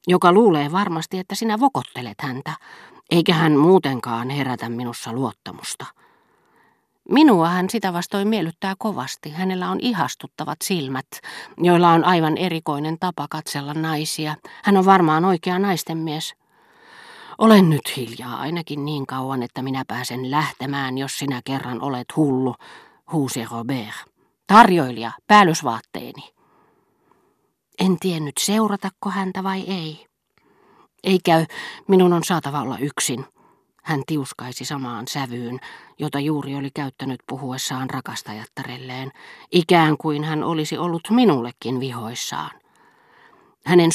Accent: native